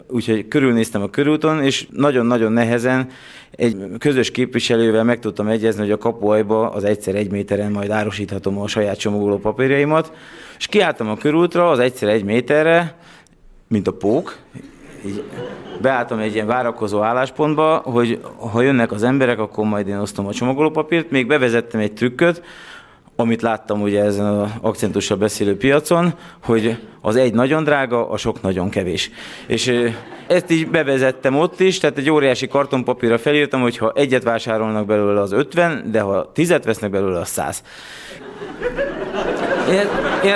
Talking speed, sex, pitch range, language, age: 150 wpm, male, 110-155 Hz, Hungarian, 20-39